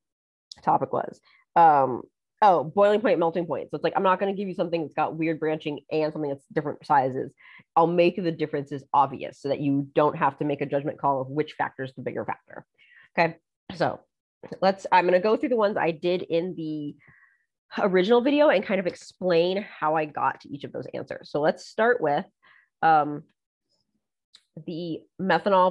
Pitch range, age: 150-190 Hz, 30-49